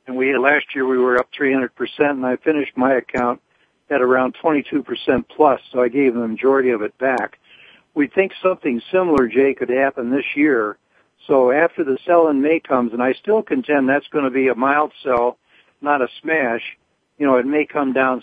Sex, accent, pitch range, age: male, American, 125-145 Hz, 60-79